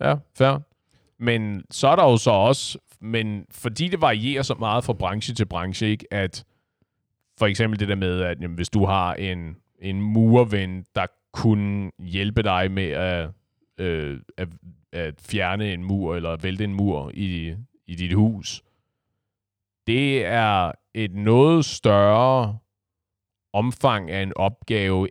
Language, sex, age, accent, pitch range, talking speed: Danish, male, 30-49, native, 95-110 Hz, 150 wpm